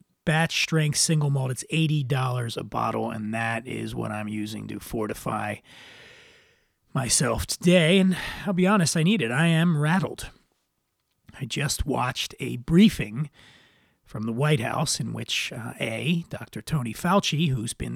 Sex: male